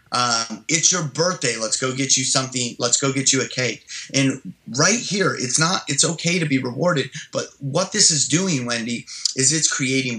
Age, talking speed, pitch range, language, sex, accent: 30-49, 200 wpm, 120-150 Hz, English, male, American